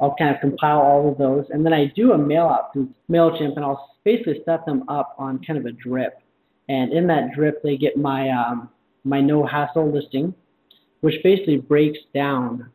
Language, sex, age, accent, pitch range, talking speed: English, male, 30-49, American, 130-150 Hz, 200 wpm